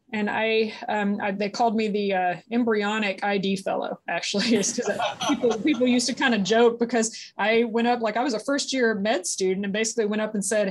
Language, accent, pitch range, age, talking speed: English, American, 195-245 Hz, 20-39, 215 wpm